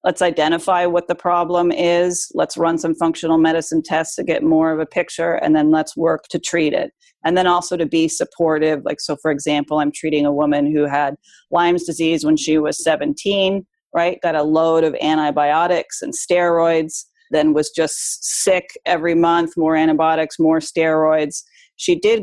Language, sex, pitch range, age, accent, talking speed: English, female, 155-180 Hz, 40-59, American, 180 wpm